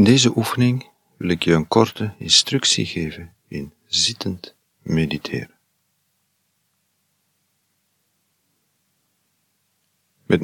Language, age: Dutch, 50-69